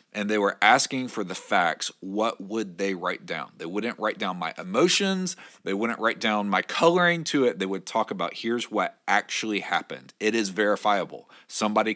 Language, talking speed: English, 190 wpm